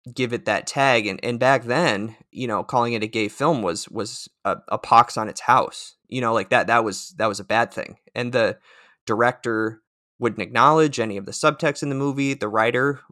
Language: English